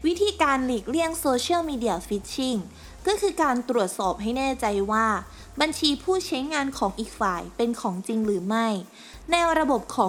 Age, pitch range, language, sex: 20-39, 210-285 Hz, Thai, female